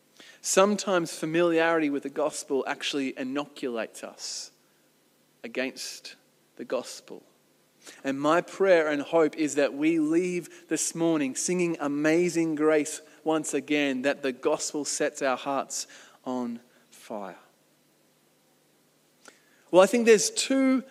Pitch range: 155-205 Hz